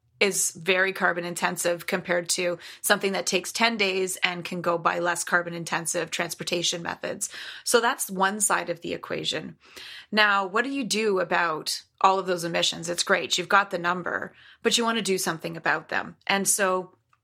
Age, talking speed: 30-49, 185 wpm